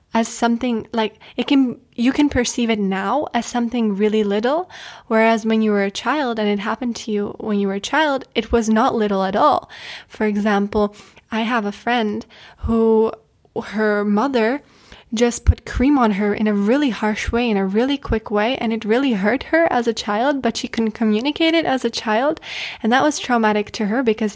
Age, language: 20-39, English